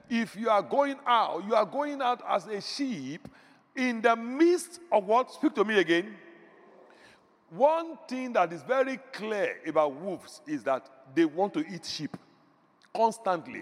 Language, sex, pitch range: English, male, 185-285 Hz